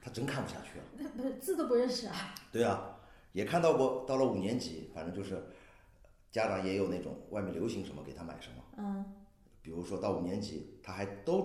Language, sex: Chinese, male